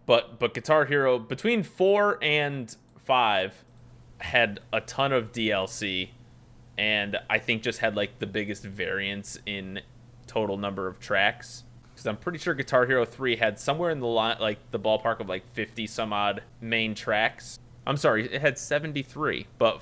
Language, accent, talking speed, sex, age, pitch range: English, American, 165 wpm, male, 20-39, 105-125 Hz